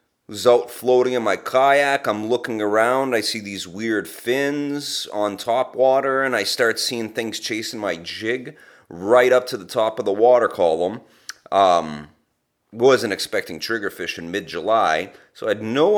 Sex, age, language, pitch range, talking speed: male, 30-49, English, 100-130 Hz, 170 wpm